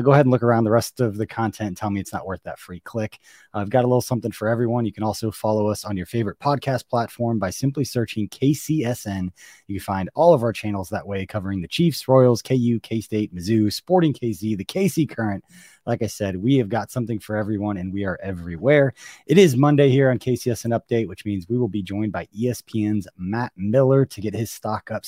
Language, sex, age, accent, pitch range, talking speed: English, male, 20-39, American, 105-130 Hz, 230 wpm